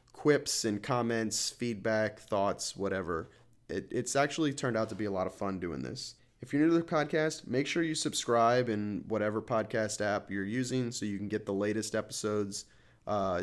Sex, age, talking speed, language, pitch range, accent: male, 30-49, 190 wpm, English, 105-125 Hz, American